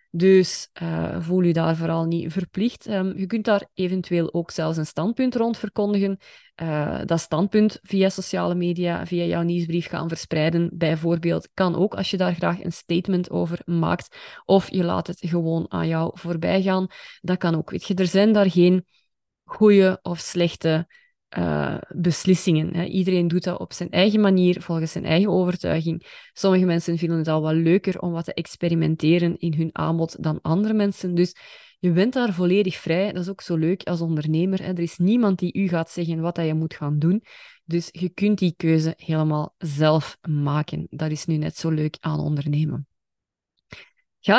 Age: 20-39